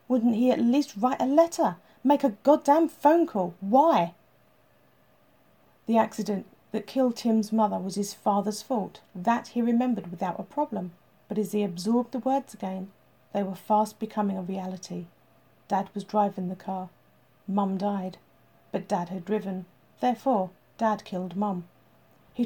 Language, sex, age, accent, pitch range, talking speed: English, female, 40-59, British, 195-235 Hz, 155 wpm